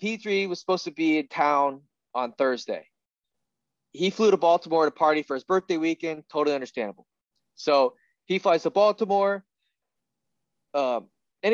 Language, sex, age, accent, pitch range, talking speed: English, male, 20-39, American, 130-185 Hz, 145 wpm